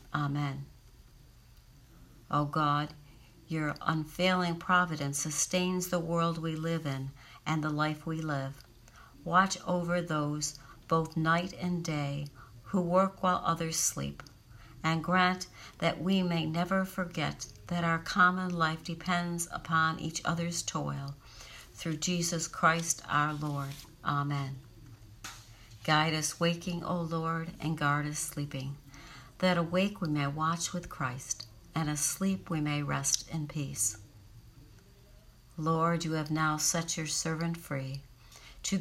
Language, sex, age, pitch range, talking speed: English, female, 60-79, 140-170 Hz, 130 wpm